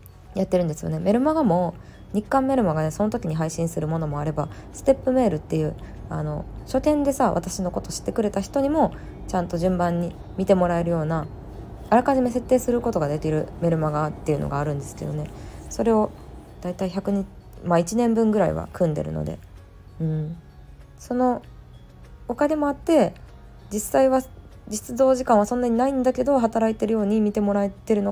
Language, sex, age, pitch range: Japanese, female, 20-39, 150-220 Hz